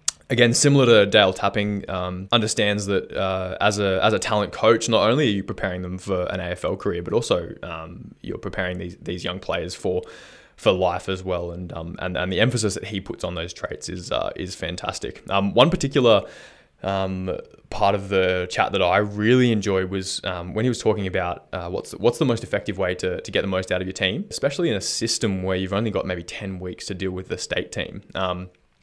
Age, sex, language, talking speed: 20-39, male, English, 225 wpm